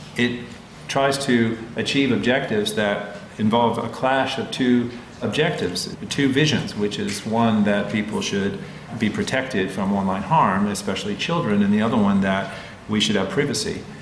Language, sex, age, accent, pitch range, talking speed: English, male, 40-59, American, 100-140 Hz, 155 wpm